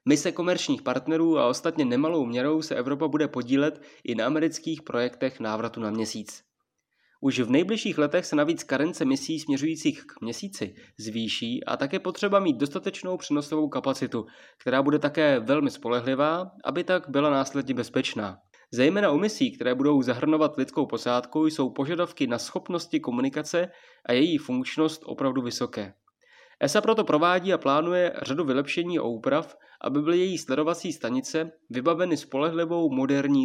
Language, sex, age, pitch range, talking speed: Czech, male, 20-39, 135-185 Hz, 145 wpm